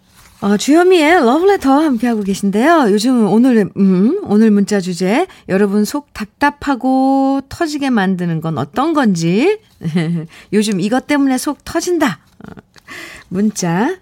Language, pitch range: Korean, 185-270 Hz